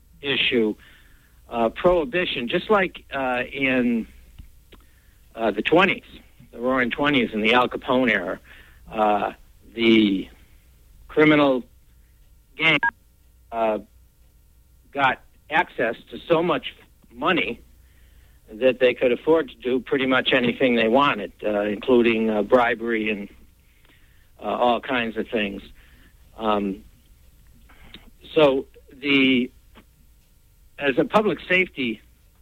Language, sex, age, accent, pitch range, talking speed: English, male, 60-79, American, 100-145 Hz, 105 wpm